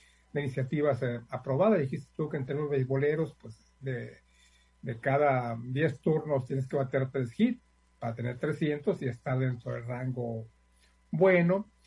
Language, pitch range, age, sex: Spanish, 130-185 Hz, 50-69, male